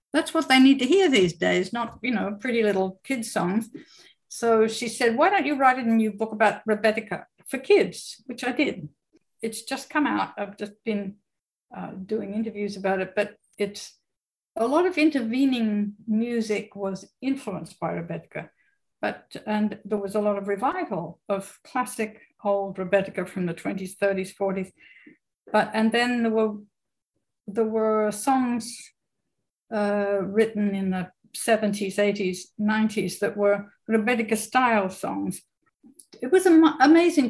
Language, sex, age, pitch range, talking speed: English, female, 60-79, 200-255 Hz, 150 wpm